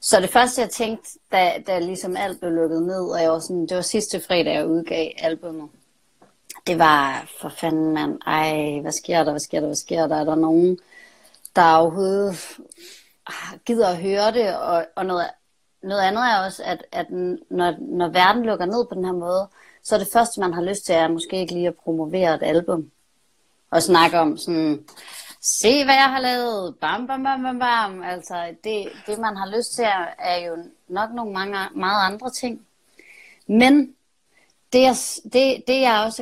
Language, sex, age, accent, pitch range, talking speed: Danish, female, 30-49, native, 170-220 Hz, 190 wpm